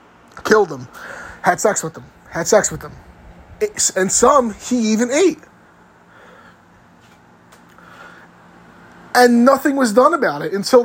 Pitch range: 175-255 Hz